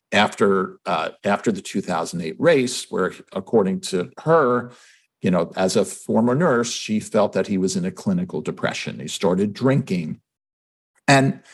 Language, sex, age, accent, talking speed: English, male, 50-69, American, 150 wpm